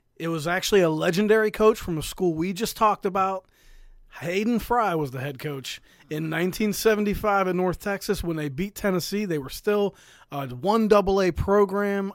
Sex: male